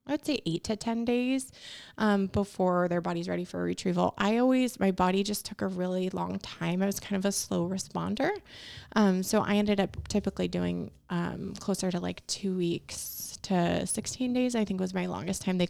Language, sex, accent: English, female, American